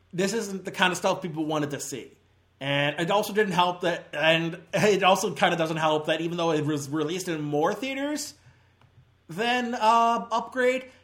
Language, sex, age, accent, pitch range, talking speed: English, male, 30-49, American, 140-185 Hz, 190 wpm